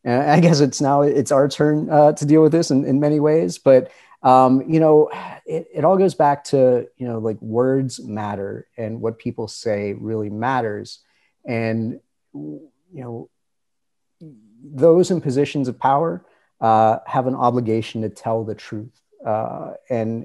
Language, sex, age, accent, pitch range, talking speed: English, male, 30-49, American, 110-135 Hz, 165 wpm